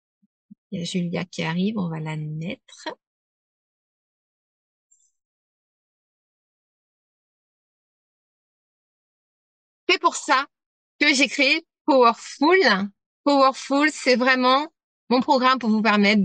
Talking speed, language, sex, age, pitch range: 80 wpm, French, female, 30-49, 185-240 Hz